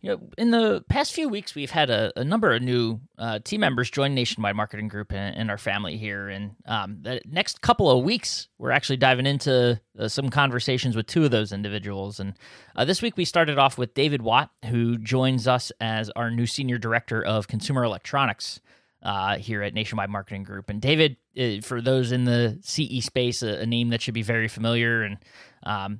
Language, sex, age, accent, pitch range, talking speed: English, male, 20-39, American, 110-130 Hz, 205 wpm